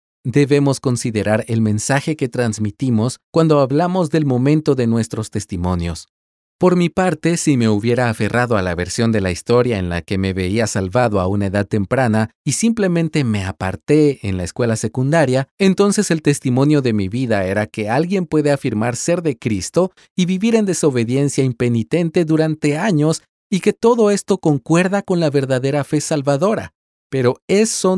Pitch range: 110-165 Hz